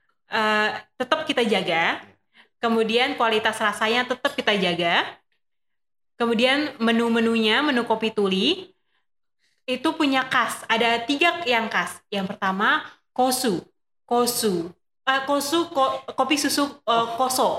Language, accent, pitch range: Indonesian, native, 220-280 Hz